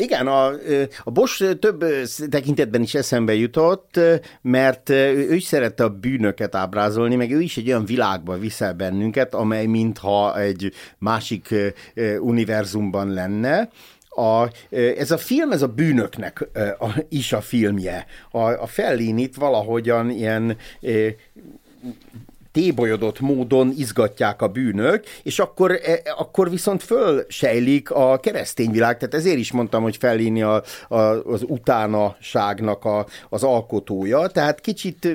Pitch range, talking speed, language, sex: 105-135 Hz, 125 wpm, Hungarian, male